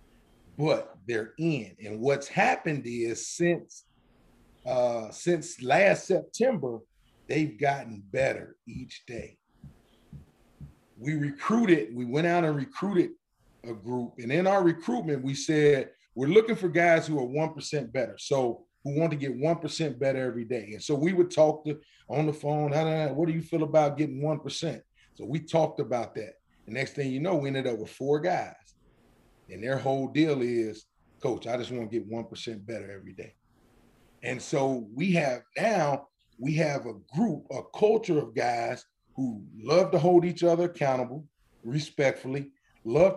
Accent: American